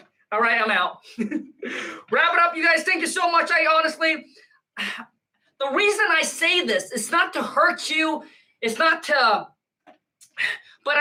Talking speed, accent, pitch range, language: 160 wpm, American, 290-355 Hz, English